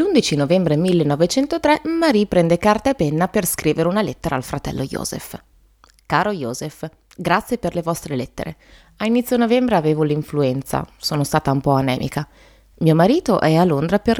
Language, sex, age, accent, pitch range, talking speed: Italian, female, 20-39, native, 145-210 Hz, 160 wpm